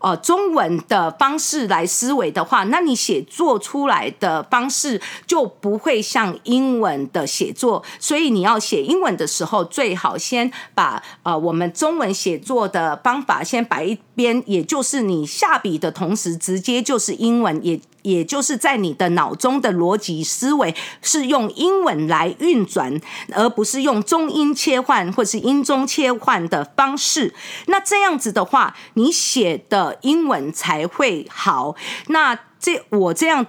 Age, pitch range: 50-69, 195-275 Hz